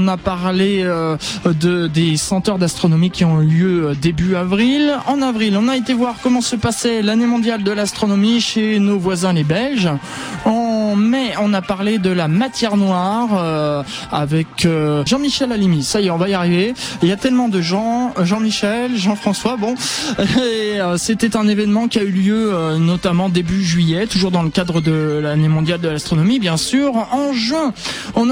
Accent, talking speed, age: French, 190 wpm, 20-39